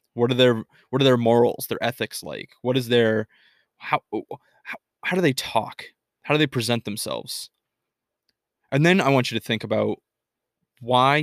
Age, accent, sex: 20-39, American, male